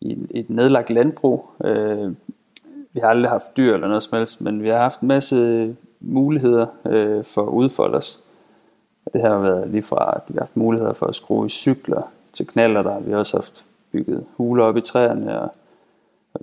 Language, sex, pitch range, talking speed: Danish, male, 110-120 Hz, 200 wpm